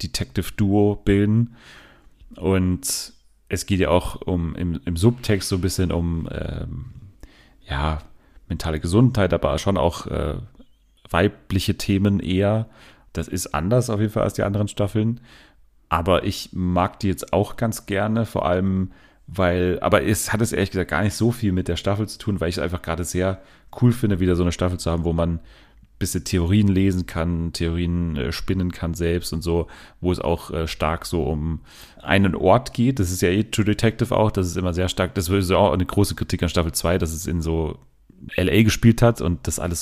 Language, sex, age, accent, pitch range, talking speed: German, male, 30-49, German, 85-100 Hz, 195 wpm